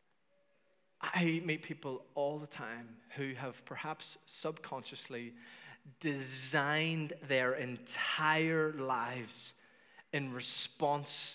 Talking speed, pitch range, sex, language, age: 85 wpm, 125-155 Hz, male, English, 30-49